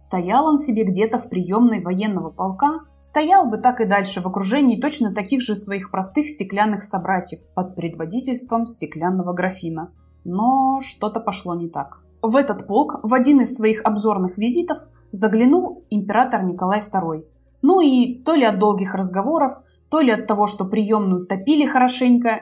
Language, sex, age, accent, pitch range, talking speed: Russian, female, 20-39, native, 190-255 Hz, 160 wpm